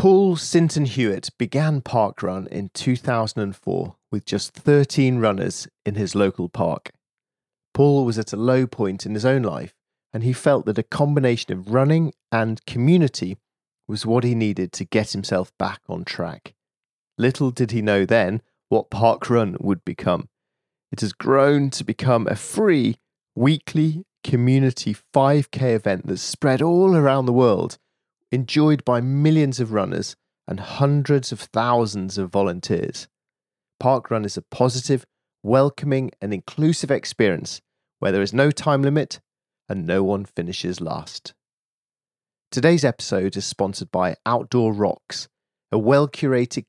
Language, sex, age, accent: English, male, 30-49, British